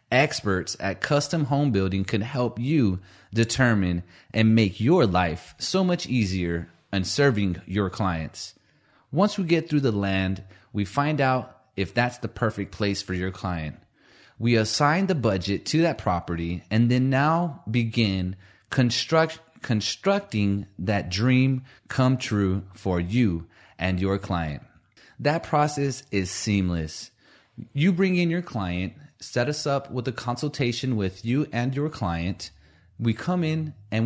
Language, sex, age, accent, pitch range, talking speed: English, male, 30-49, American, 95-130 Hz, 145 wpm